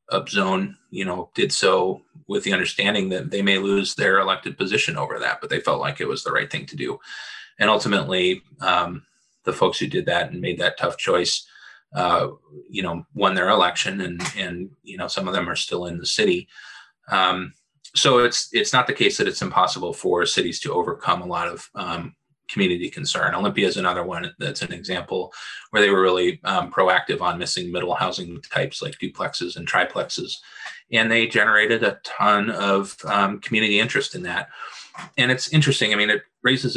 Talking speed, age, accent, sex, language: 195 wpm, 30-49, American, male, English